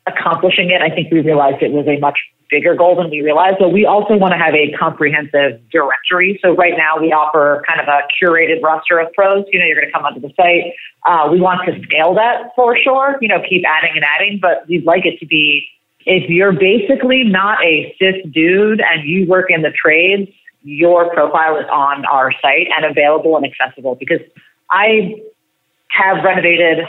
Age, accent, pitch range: 30-49, American, 155-195 Hz